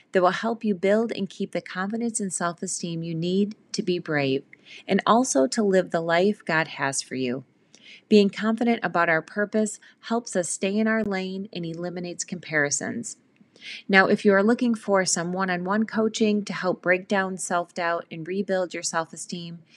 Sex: female